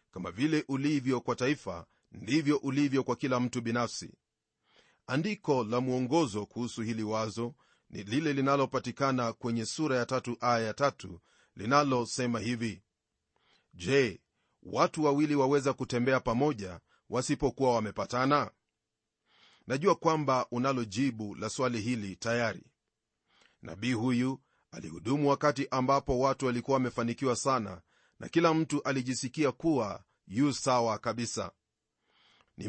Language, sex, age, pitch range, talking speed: Swahili, male, 40-59, 115-140 Hz, 115 wpm